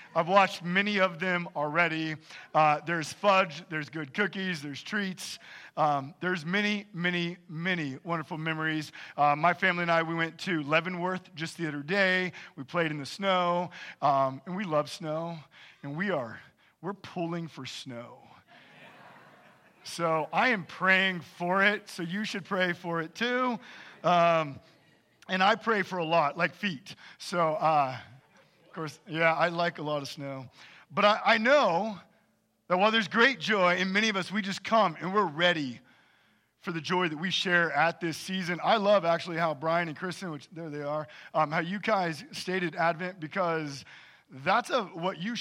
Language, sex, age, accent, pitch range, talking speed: English, male, 40-59, American, 155-190 Hz, 175 wpm